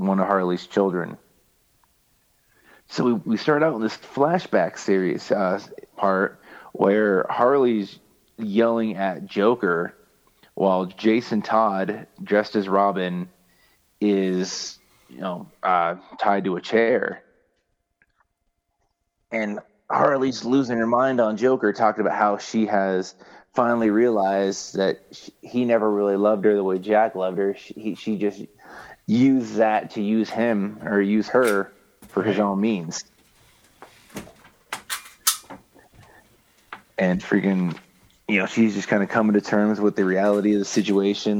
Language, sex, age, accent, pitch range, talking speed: English, male, 30-49, American, 95-110 Hz, 135 wpm